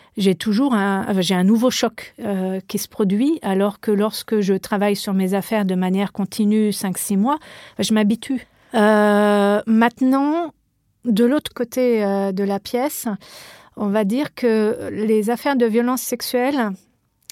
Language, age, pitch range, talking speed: French, 40-59, 210-255 Hz, 150 wpm